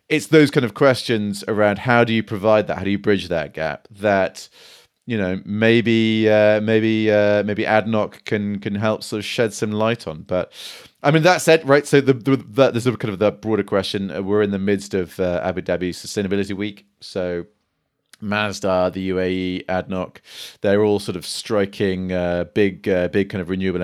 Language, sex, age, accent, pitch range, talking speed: English, male, 30-49, British, 95-120 Hz, 200 wpm